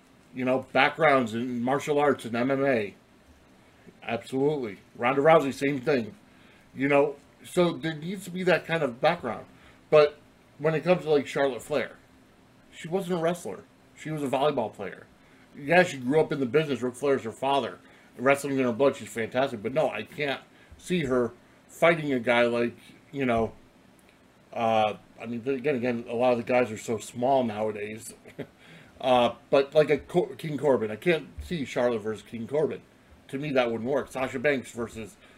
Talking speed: 180 wpm